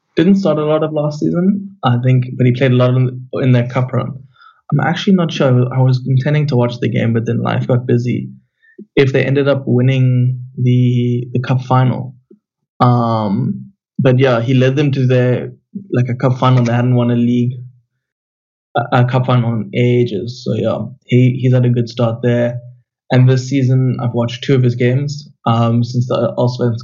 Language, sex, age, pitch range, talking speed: English, male, 20-39, 120-130 Hz, 200 wpm